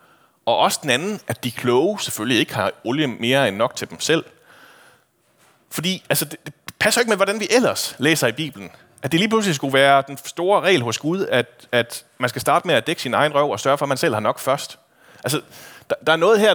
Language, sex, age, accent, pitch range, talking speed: Danish, male, 30-49, native, 120-160 Hz, 245 wpm